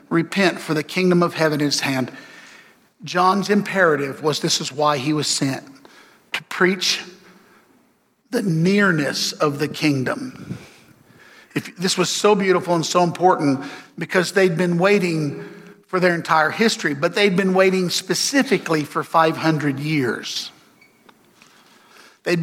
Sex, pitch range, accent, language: male, 155-190 Hz, American, English